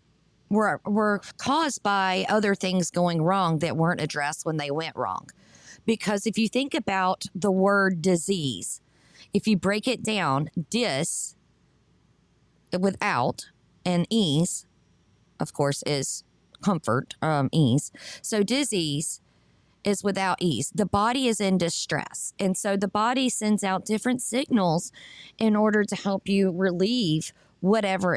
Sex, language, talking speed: female, English, 135 wpm